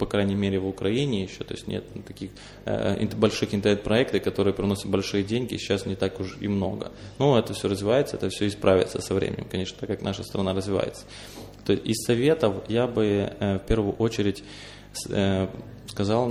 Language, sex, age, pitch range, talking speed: Russian, male, 20-39, 100-110 Hz, 185 wpm